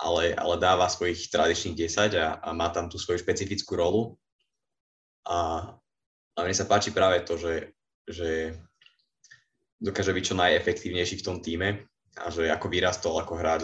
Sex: male